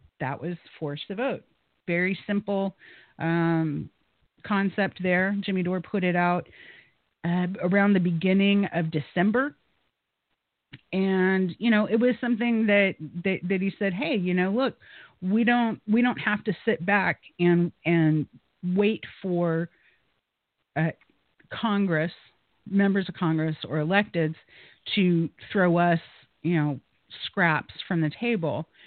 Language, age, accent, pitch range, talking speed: English, 40-59, American, 165-205 Hz, 135 wpm